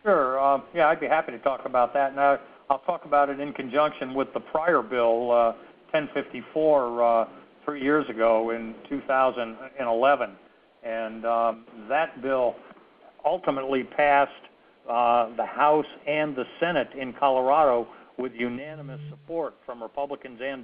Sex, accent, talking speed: male, American, 140 wpm